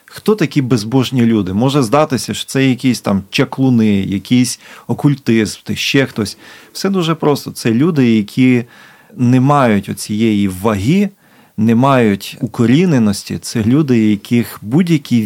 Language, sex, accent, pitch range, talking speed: Ukrainian, male, native, 110-140 Hz, 125 wpm